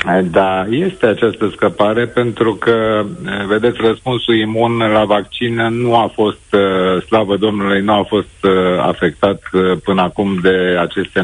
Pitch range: 105-125 Hz